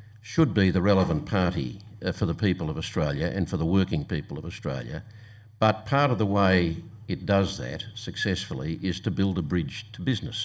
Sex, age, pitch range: male, 50-69, 95-110 Hz